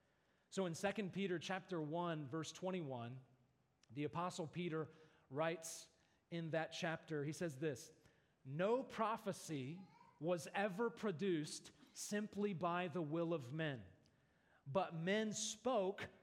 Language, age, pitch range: English, 40-59, 150-190 Hz